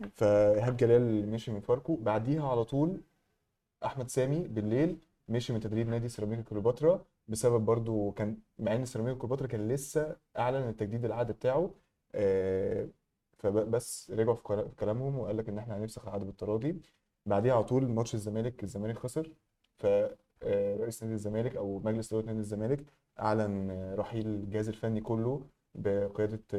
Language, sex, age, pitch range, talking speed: Arabic, male, 20-39, 105-125 Hz, 140 wpm